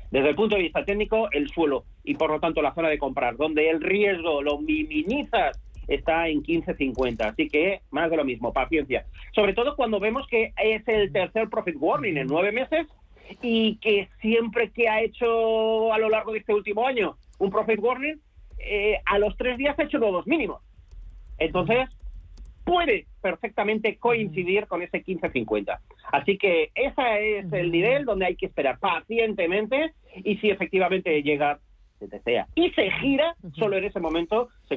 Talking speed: 175 wpm